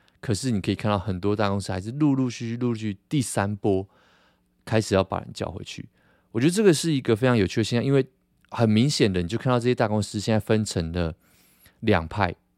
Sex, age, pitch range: male, 20-39, 90-120 Hz